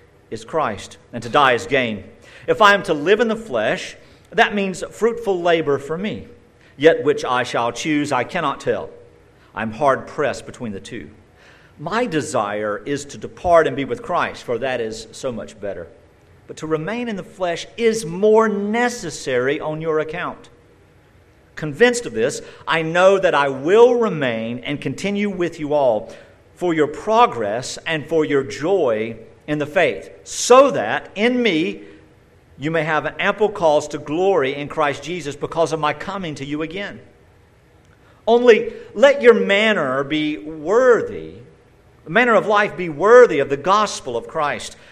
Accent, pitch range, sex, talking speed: American, 125-210 Hz, male, 165 wpm